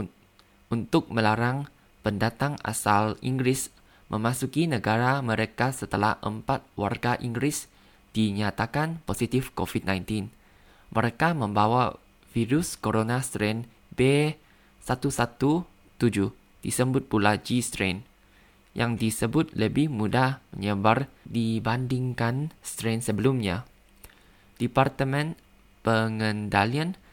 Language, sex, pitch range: Indonesian, male, 105-135 Hz